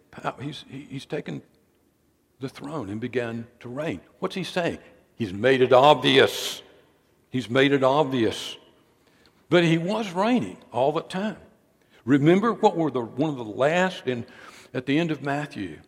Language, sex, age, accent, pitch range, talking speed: English, male, 60-79, American, 140-215 Hz, 155 wpm